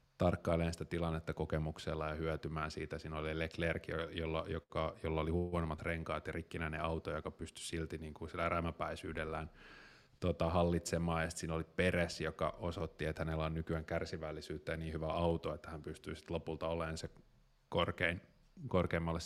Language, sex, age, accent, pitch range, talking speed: Finnish, male, 30-49, native, 80-95 Hz, 155 wpm